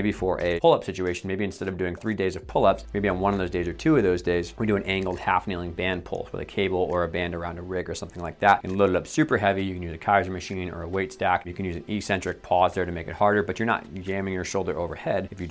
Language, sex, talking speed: English, male, 325 wpm